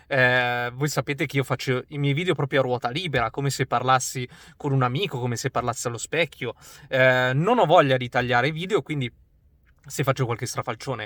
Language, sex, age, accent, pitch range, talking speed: Italian, male, 20-39, native, 125-160 Hz, 195 wpm